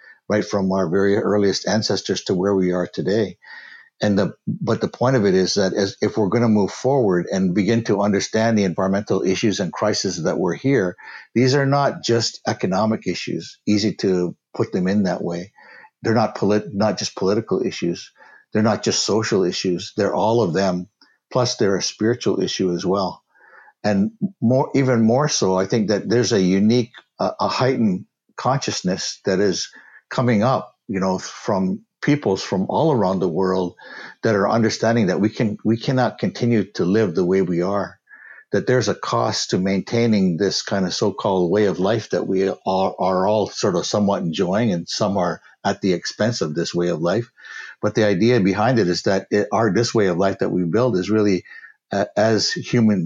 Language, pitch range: English, 95-120 Hz